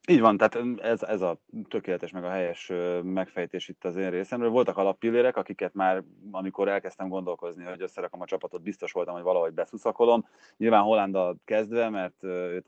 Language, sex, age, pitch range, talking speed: Hungarian, male, 30-49, 95-120 Hz, 170 wpm